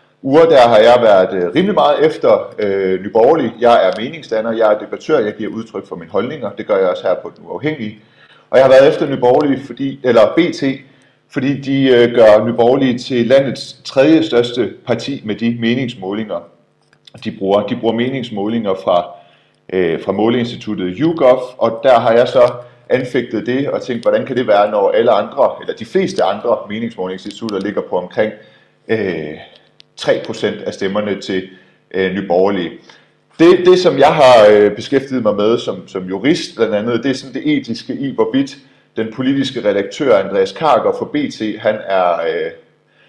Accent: native